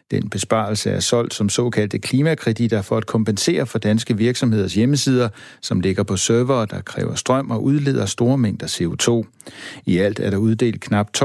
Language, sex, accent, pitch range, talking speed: Danish, male, native, 100-125 Hz, 170 wpm